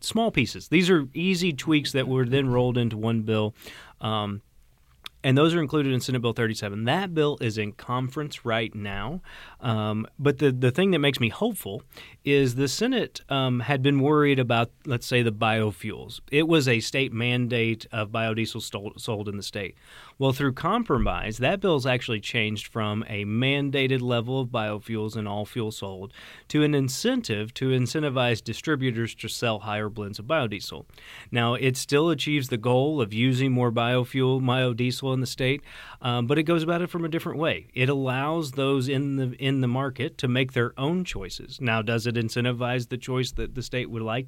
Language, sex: English, male